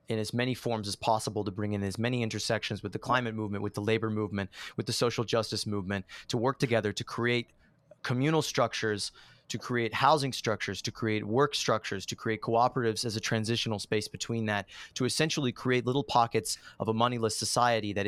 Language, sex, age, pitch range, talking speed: English, male, 30-49, 110-135 Hz, 195 wpm